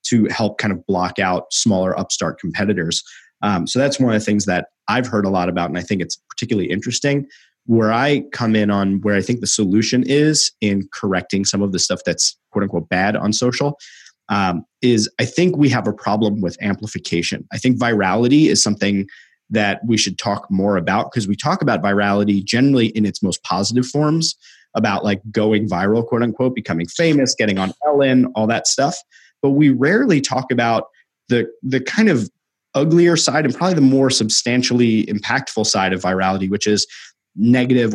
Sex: male